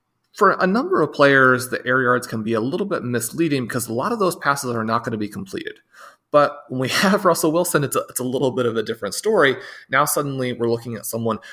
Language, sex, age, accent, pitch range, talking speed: English, male, 30-49, American, 115-145 Hz, 245 wpm